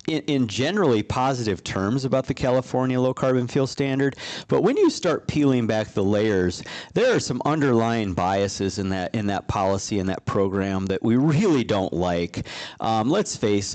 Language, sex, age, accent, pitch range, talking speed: English, male, 40-59, American, 105-135 Hz, 180 wpm